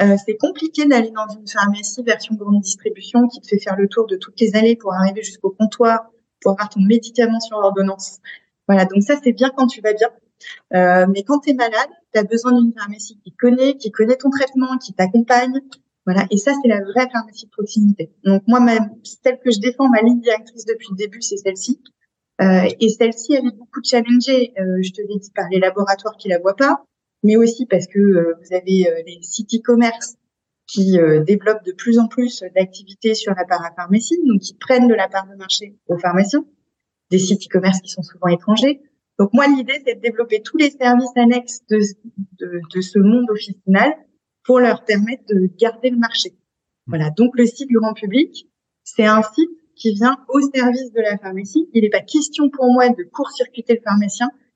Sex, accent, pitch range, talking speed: female, French, 195-250 Hz, 210 wpm